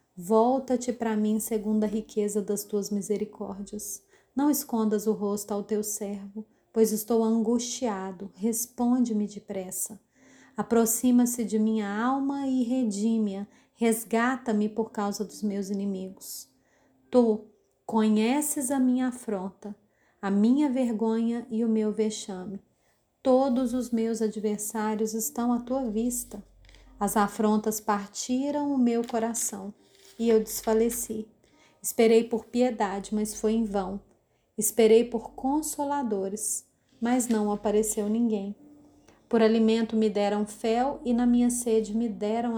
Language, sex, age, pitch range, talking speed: Portuguese, female, 30-49, 210-235 Hz, 125 wpm